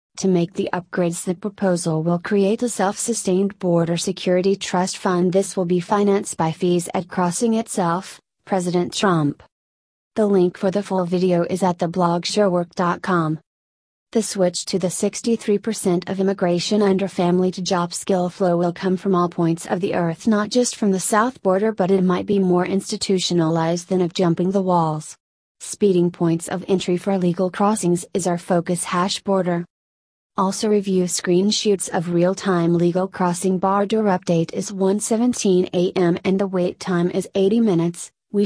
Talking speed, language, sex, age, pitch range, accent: 160 wpm, English, female, 30-49, 175-200 Hz, American